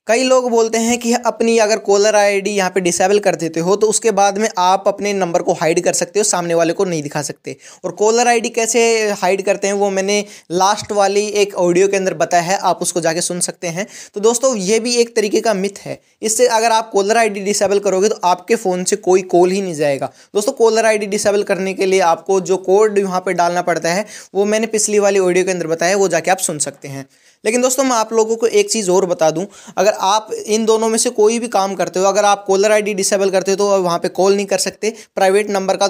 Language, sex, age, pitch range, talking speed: Hindi, male, 20-39, 185-215 Hz, 250 wpm